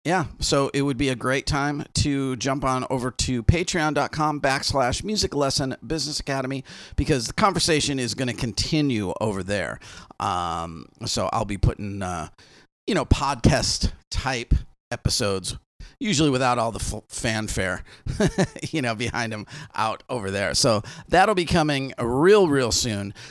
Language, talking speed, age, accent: English, 150 wpm, 40-59, American